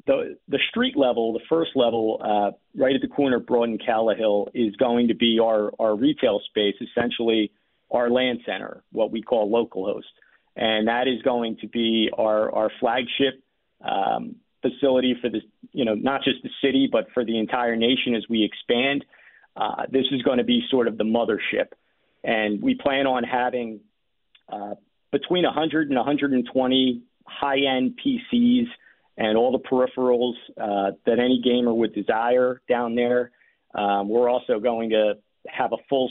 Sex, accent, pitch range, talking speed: male, American, 110-130 Hz, 170 wpm